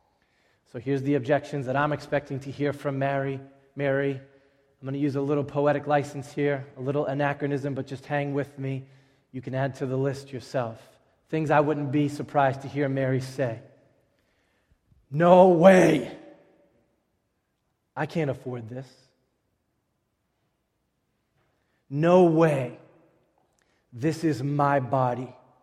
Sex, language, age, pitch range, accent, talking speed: male, English, 30-49, 135-175 Hz, American, 135 wpm